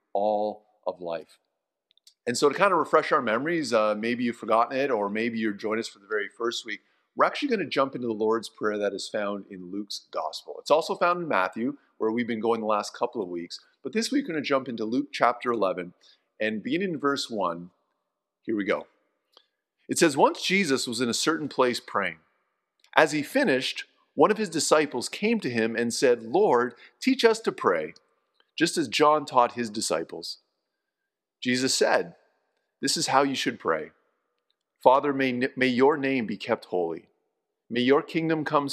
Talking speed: 200 wpm